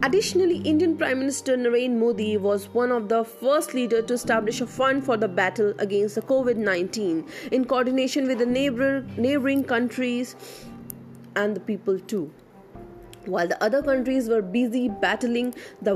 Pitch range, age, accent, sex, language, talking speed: 220-280 Hz, 30-49, native, female, Hindi, 155 wpm